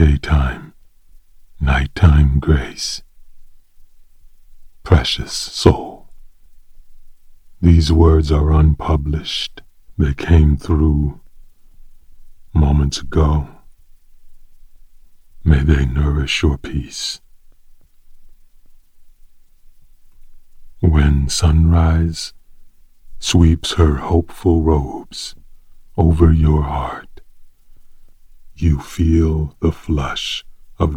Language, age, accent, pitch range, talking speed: English, 40-59, American, 70-85 Hz, 65 wpm